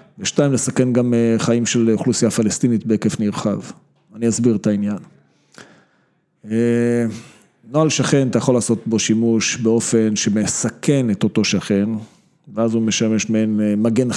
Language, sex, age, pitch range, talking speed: Hebrew, male, 40-59, 110-125 Hz, 125 wpm